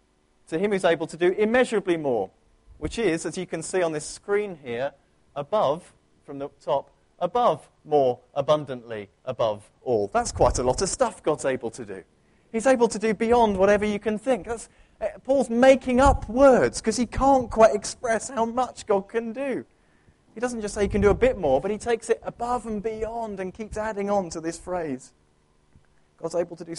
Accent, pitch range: British, 130-210 Hz